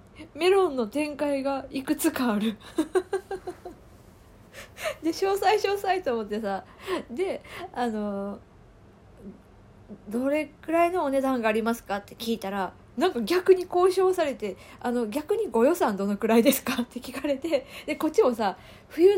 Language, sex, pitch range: Japanese, female, 205-315 Hz